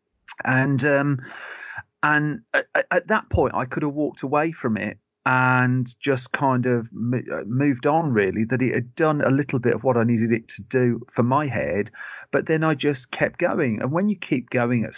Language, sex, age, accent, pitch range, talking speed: English, male, 40-59, British, 115-135 Hz, 200 wpm